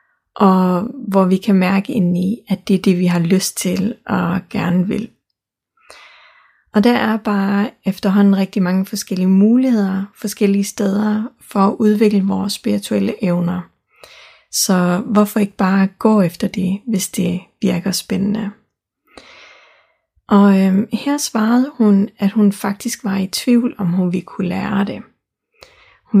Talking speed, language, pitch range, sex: 145 wpm, Danish, 190-220 Hz, female